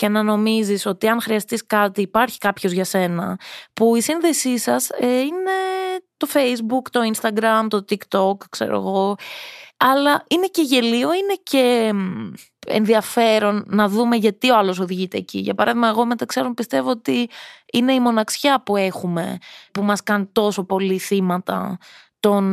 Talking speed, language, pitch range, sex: 150 wpm, Greek, 195-240 Hz, female